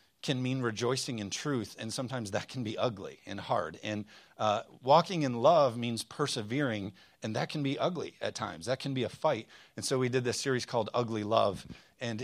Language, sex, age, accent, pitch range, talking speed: English, male, 40-59, American, 115-150 Hz, 205 wpm